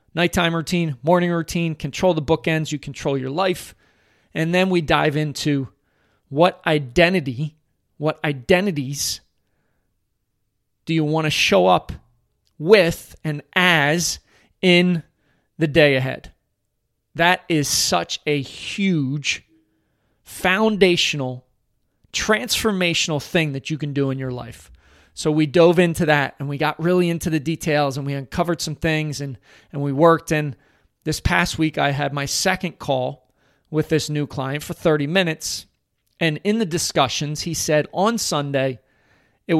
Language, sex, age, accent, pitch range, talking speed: English, male, 30-49, American, 125-165 Hz, 140 wpm